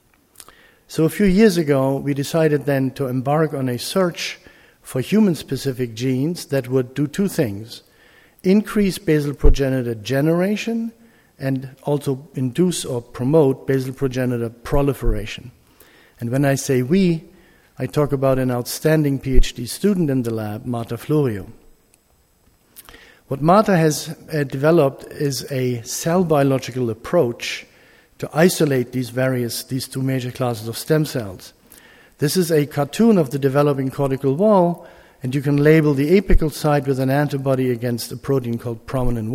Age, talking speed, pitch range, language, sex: 50-69, 145 wpm, 130-160 Hz, English, male